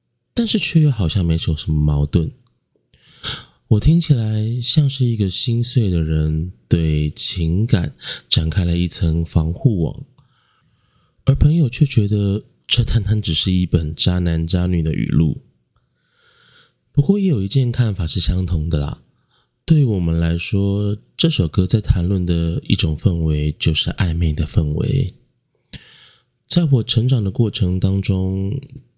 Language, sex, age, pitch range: Chinese, male, 20-39, 85-115 Hz